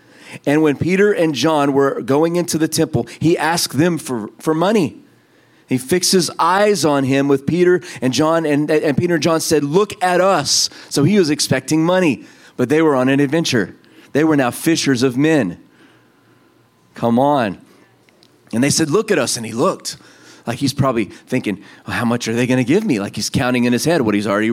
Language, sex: English, male